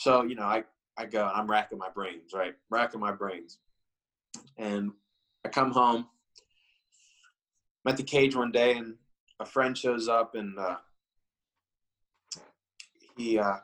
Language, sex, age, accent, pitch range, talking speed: English, male, 20-39, American, 100-120 Hz, 145 wpm